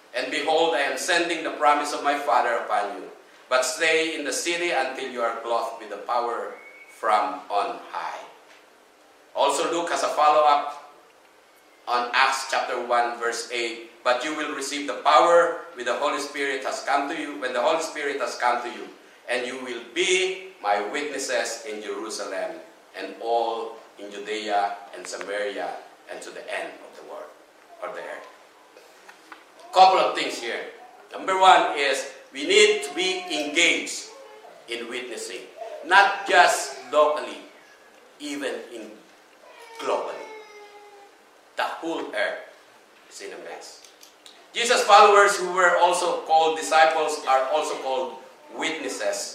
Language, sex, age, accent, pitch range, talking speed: English, male, 50-69, Filipino, 125-200 Hz, 150 wpm